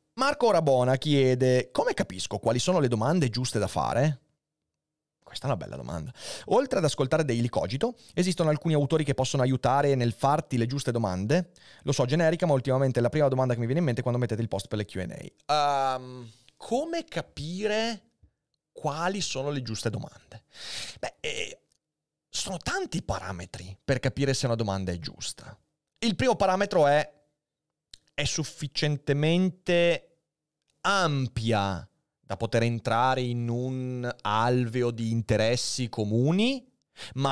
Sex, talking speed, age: male, 145 wpm, 30-49